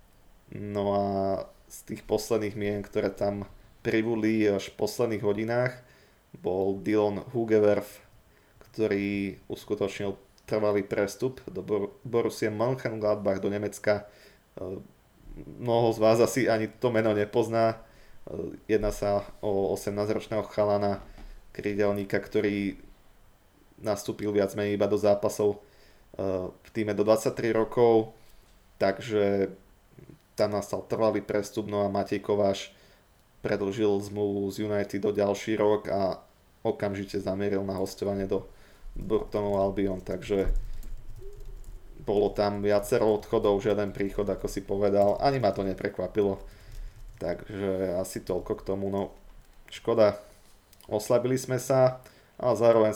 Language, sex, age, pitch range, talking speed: Slovak, male, 20-39, 100-110 Hz, 115 wpm